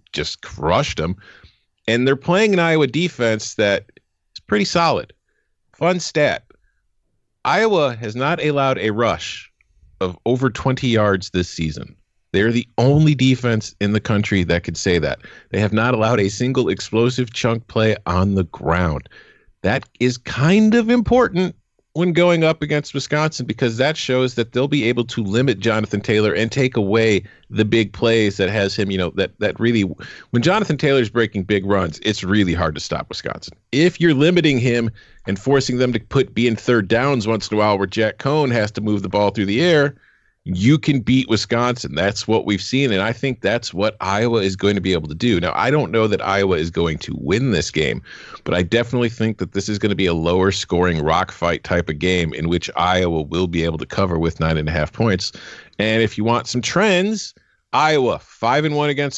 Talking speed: 205 wpm